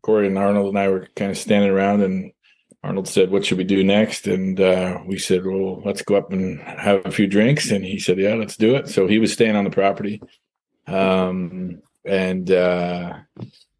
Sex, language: male, English